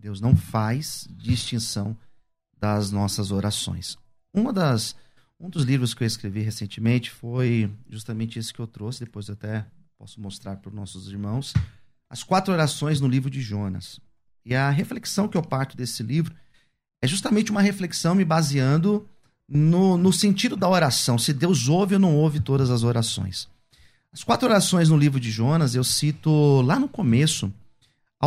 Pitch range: 115-165 Hz